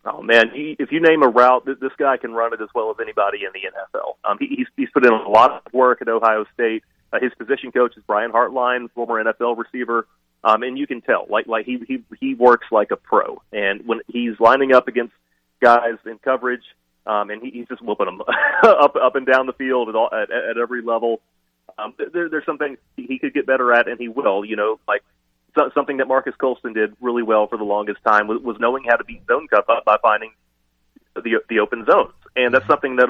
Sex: male